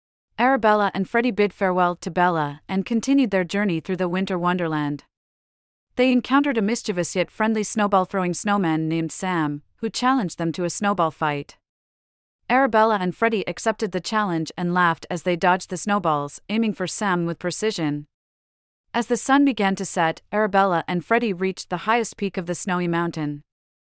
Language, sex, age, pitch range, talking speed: English, female, 40-59, 170-215 Hz, 170 wpm